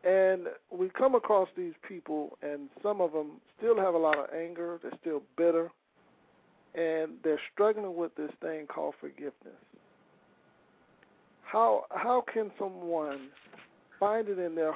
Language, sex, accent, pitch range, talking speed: English, male, American, 160-210 Hz, 140 wpm